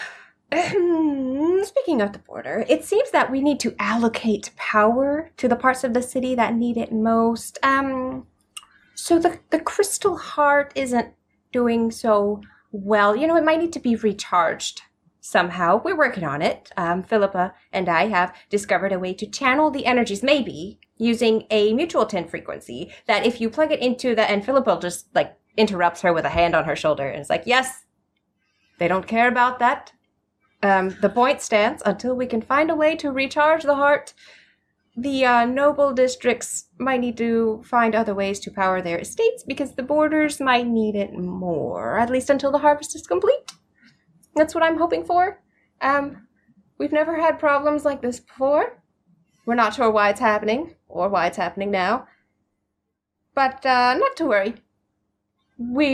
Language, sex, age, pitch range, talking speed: English, female, 20-39, 210-290 Hz, 175 wpm